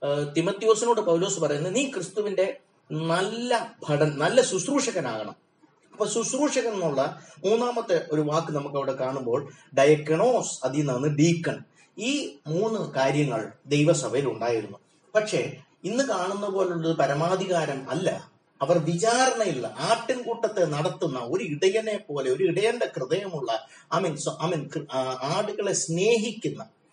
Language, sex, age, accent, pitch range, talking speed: Malayalam, male, 30-49, native, 135-190 Hz, 100 wpm